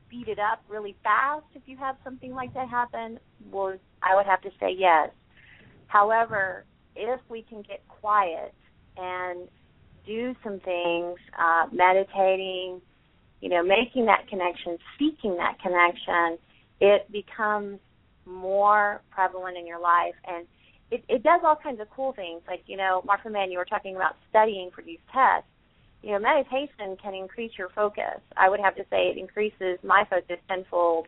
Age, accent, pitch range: 30-49, American, 185-220 Hz